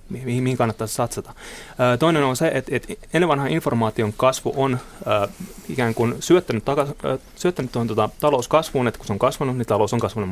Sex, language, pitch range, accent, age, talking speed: male, Finnish, 115-155 Hz, native, 30-49, 155 wpm